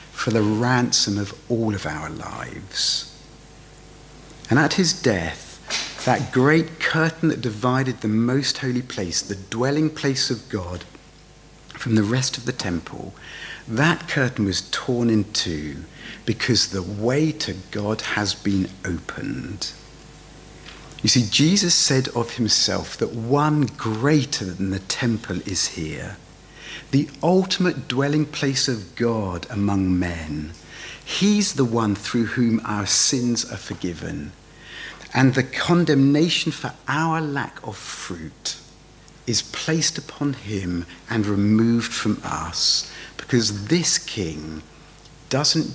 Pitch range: 100-140 Hz